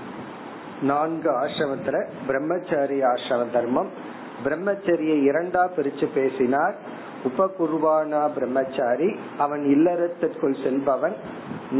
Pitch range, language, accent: 135-170 Hz, Tamil, native